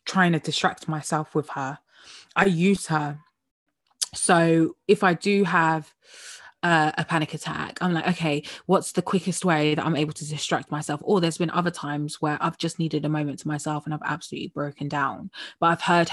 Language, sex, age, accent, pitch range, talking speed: English, female, 20-39, British, 155-190 Hz, 195 wpm